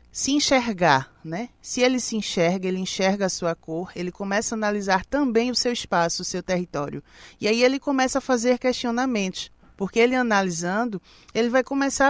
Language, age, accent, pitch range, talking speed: Portuguese, 20-39, Brazilian, 180-235 Hz, 180 wpm